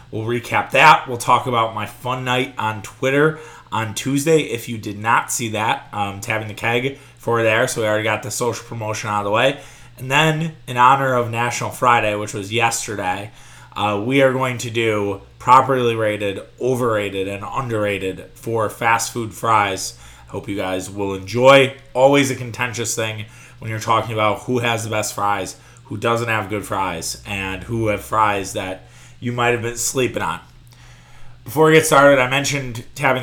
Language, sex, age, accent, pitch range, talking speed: English, male, 20-39, American, 105-125 Hz, 185 wpm